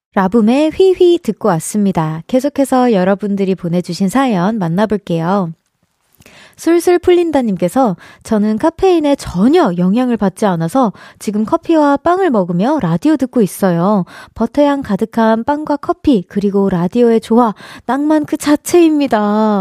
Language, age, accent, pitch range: Korean, 20-39, native, 190-275 Hz